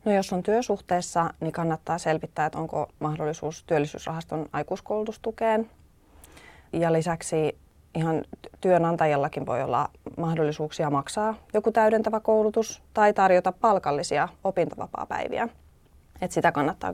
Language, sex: Finnish, female